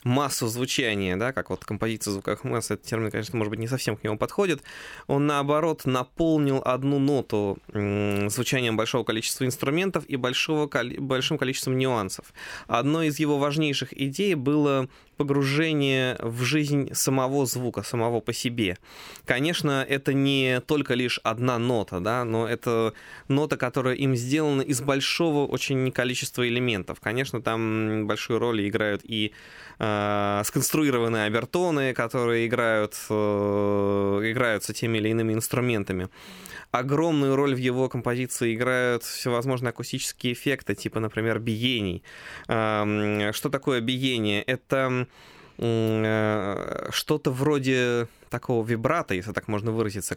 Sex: male